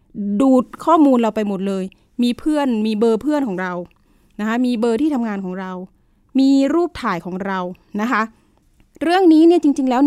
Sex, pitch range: female, 210-275 Hz